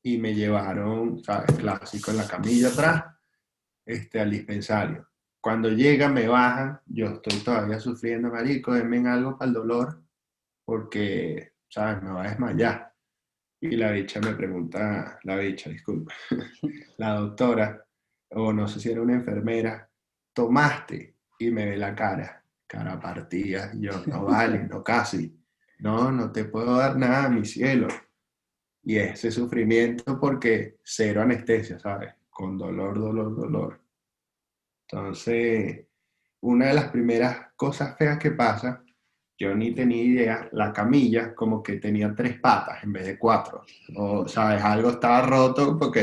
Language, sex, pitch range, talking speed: English, male, 105-125 Hz, 145 wpm